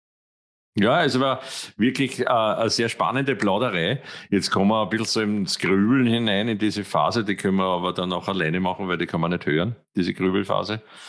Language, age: German, 50-69